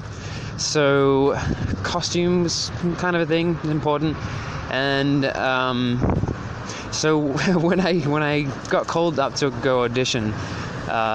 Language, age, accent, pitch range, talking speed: English, 20-39, Australian, 115-145 Hz, 120 wpm